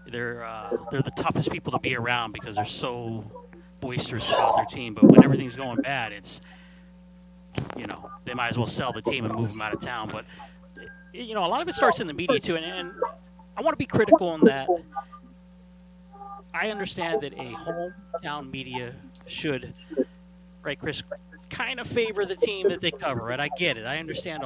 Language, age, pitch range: English, 30-49, 145-195 Hz